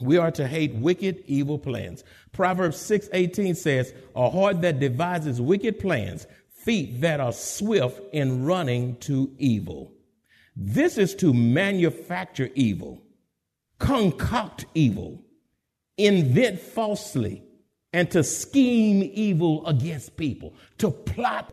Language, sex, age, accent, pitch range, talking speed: English, male, 50-69, American, 135-195 Hz, 115 wpm